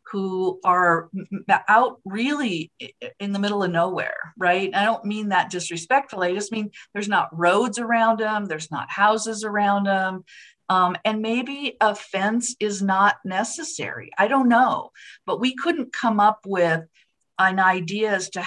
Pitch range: 170-210 Hz